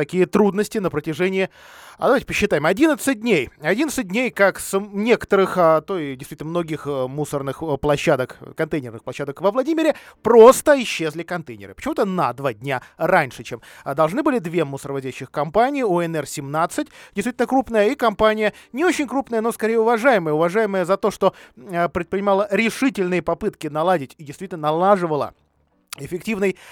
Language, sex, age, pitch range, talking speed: Russian, male, 20-39, 145-210 Hz, 140 wpm